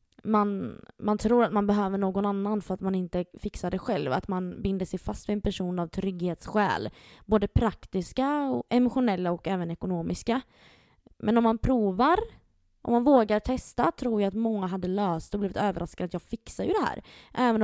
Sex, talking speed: female, 190 wpm